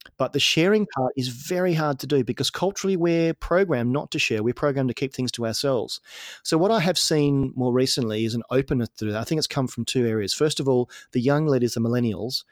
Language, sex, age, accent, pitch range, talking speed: English, male, 30-49, Australian, 115-145 Hz, 240 wpm